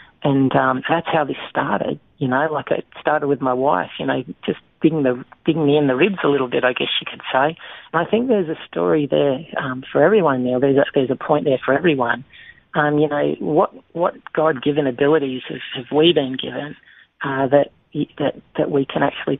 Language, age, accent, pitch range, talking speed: English, 40-59, Australian, 130-150 Hz, 225 wpm